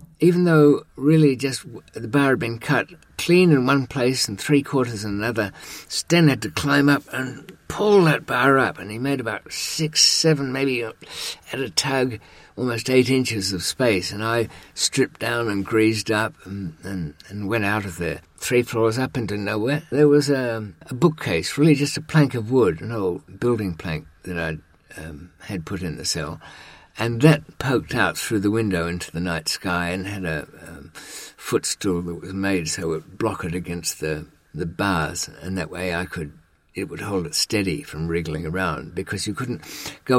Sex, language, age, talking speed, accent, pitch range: male, English, 50-69, 195 wpm, British, 95-140 Hz